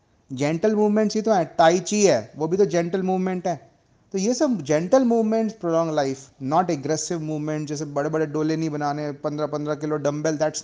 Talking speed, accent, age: 190 wpm, native, 30-49